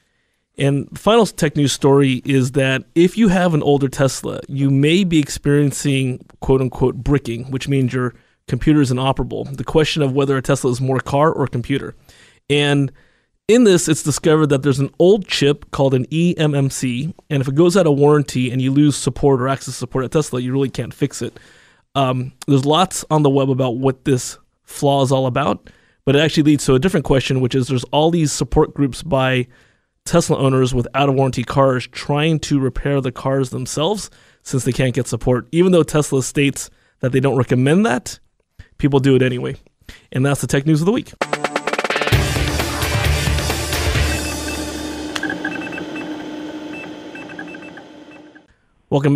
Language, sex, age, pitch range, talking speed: English, male, 20-39, 130-155 Hz, 170 wpm